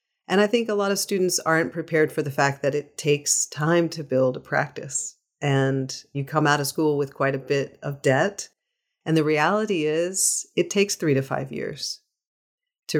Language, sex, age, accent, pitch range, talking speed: English, female, 40-59, American, 140-175 Hz, 200 wpm